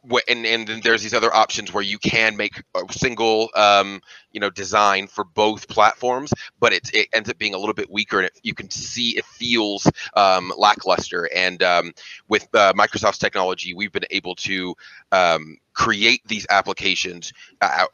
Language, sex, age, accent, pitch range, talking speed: English, male, 30-49, American, 95-120 Hz, 180 wpm